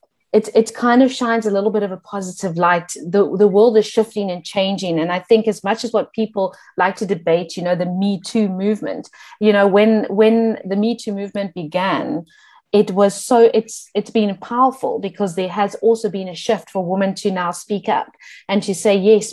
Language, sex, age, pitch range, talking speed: English, female, 30-49, 190-220 Hz, 215 wpm